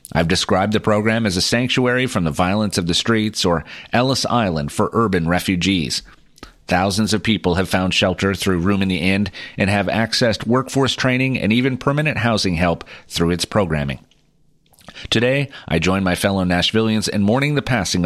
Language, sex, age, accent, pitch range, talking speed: English, male, 30-49, American, 95-120 Hz, 175 wpm